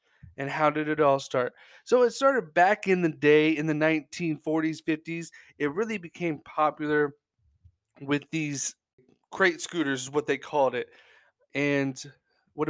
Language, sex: English, male